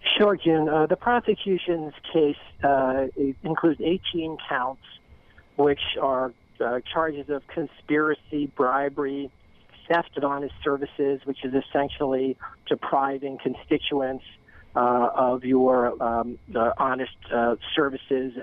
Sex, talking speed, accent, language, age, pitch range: male, 110 wpm, American, English, 50-69, 130-155 Hz